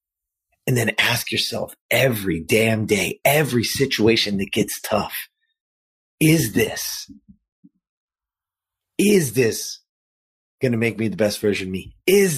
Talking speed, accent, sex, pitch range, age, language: 125 wpm, American, male, 95-140 Hz, 30-49, English